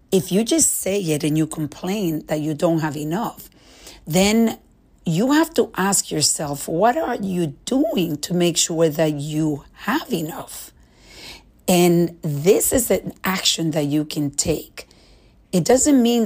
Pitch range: 150-180 Hz